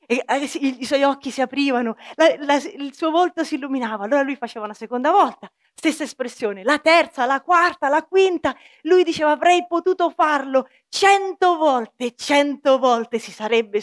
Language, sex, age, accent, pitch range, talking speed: Italian, female, 30-49, native, 245-325 Hz, 165 wpm